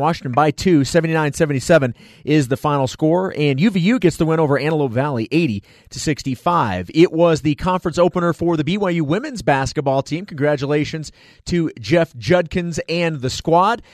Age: 30-49